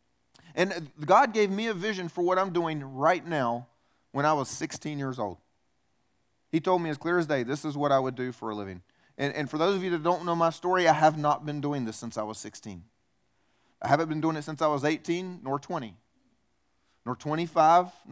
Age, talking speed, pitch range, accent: 30-49, 225 wpm, 145-195 Hz, American